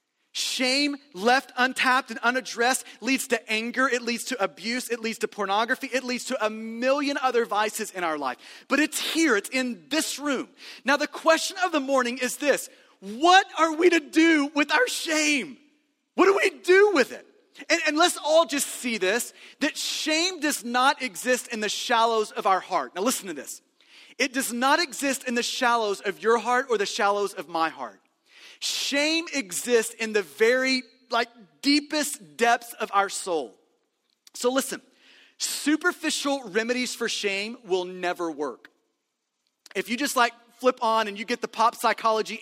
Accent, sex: American, male